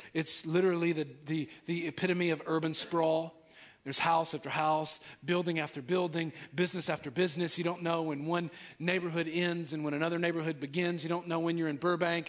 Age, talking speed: 40-59, 185 wpm